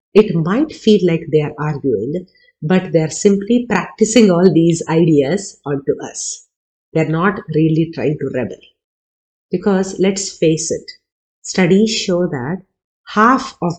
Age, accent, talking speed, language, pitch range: 50-69, Indian, 145 wpm, English, 150-195 Hz